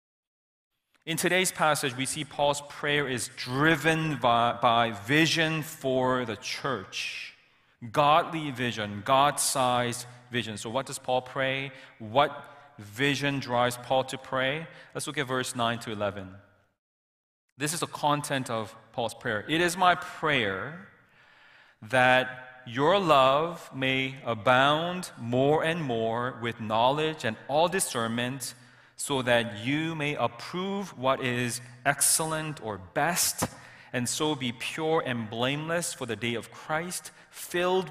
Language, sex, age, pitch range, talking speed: English, male, 40-59, 120-155 Hz, 130 wpm